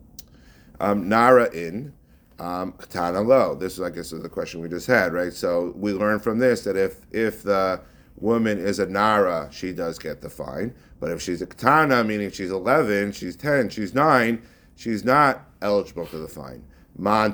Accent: American